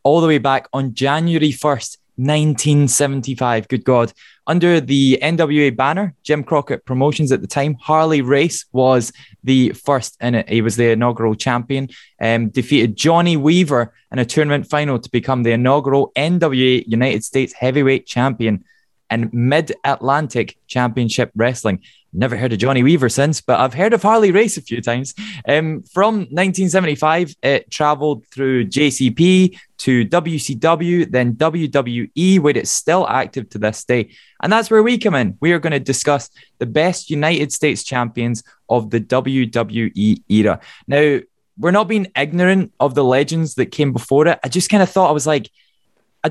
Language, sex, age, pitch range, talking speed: English, male, 20-39, 125-165 Hz, 165 wpm